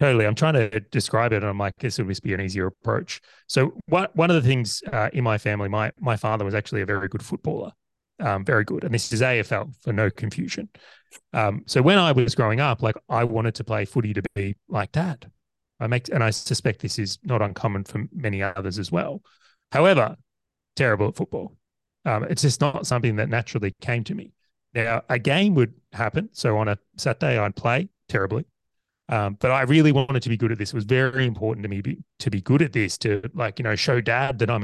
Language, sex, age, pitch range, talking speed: English, male, 30-49, 105-130 Hz, 225 wpm